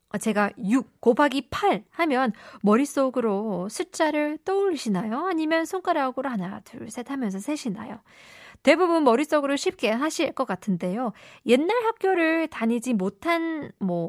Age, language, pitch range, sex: 20-39, Korean, 200-285 Hz, female